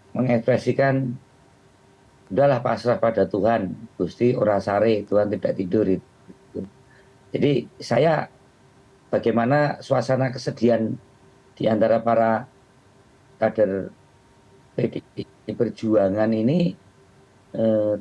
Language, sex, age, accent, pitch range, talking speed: Indonesian, male, 50-69, native, 115-140 Hz, 75 wpm